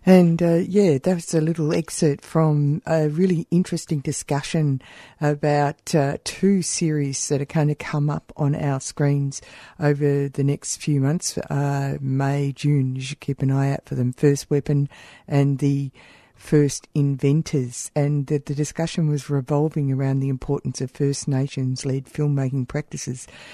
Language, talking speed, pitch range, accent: English, 160 wpm, 130-145 Hz, Australian